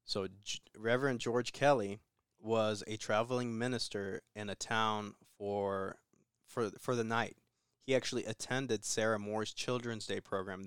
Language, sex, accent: English, male, American